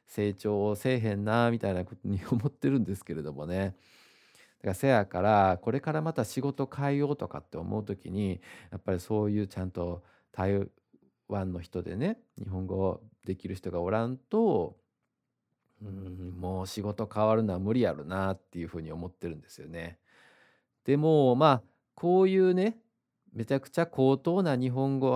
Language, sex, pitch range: Japanese, male, 95-135 Hz